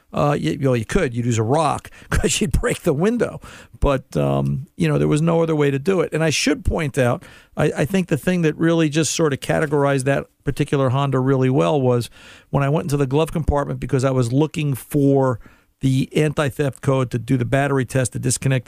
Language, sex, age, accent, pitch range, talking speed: English, male, 50-69, American, 120-150 Hz, 230 wpm